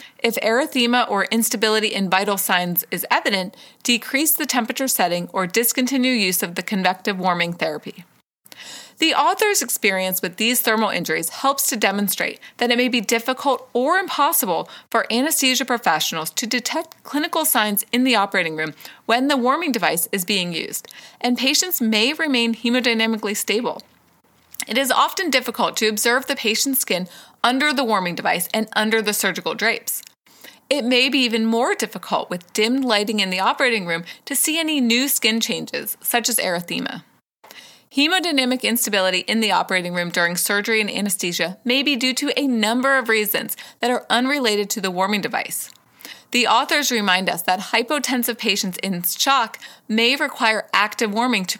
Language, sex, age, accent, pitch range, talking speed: English, female, 30-49, American, 195-260 Hz, 165 wpm